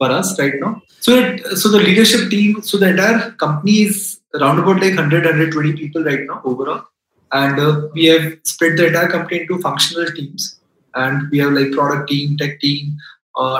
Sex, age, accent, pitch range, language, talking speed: male, 20-39, Indian, 145-185 Hz, English, 190 wpm